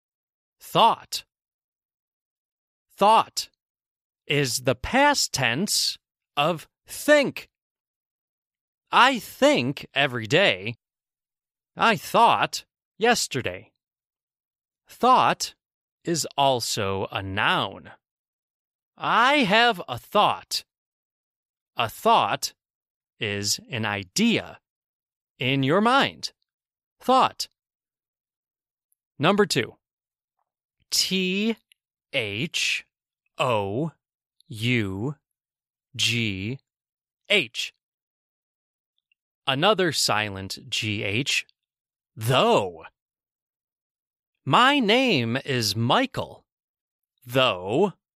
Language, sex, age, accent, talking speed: English, male, 30-49, American, 55 wpm